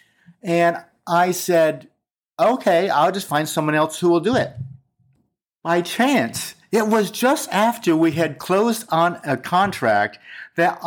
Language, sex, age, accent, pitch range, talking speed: English, male, 50-69, American, 130-190 Hz, 145 wpm